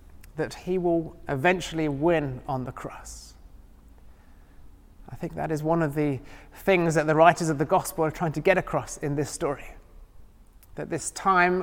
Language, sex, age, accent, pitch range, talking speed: English, male, 30-49, British, 115-165 Hz, 170 wpm